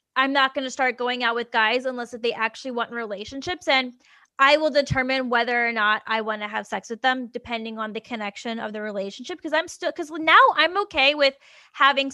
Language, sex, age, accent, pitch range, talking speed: English, female, 10-29, American, 230-280 Hz, 215 wpm